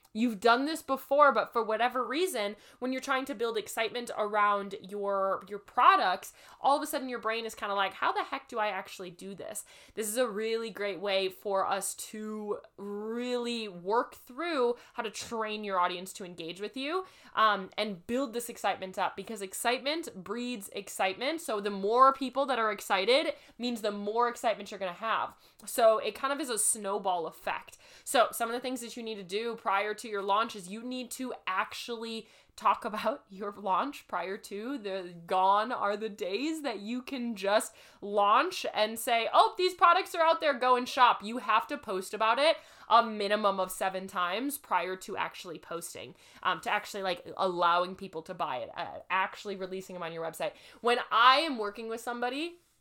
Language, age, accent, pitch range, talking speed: English, 20-39, American, 200-250 Hz, 195 wpm